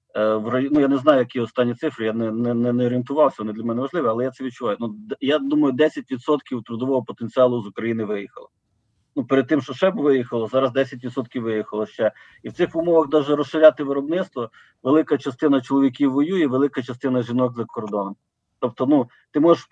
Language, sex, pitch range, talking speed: Ukrainian, male, 120-145 Hz, 190 wpm